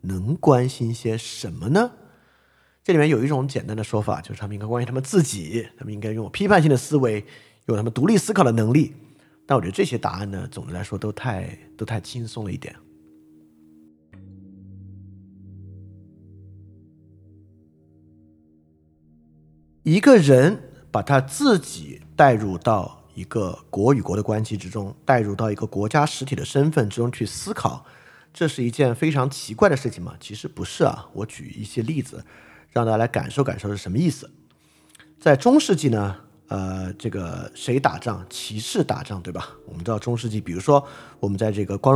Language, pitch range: Chinese, 95-135 Hz